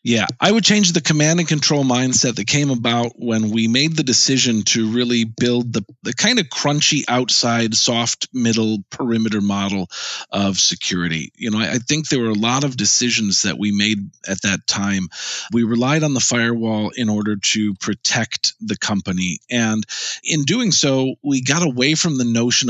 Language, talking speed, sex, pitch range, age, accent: English, 185 wpm, male, 105-140 Hz, 40-59, American